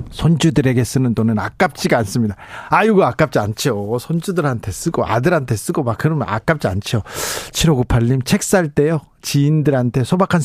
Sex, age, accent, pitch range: male, 40-59, native, 130-190 Hz